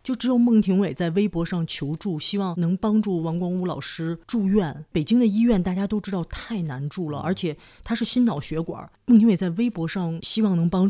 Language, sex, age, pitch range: Chinese, female, 30-49, 165-210 Hz